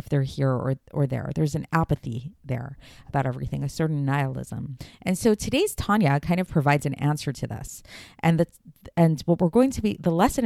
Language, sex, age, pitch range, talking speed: English, female, 30-49, 140-180 Hz, 205 wpm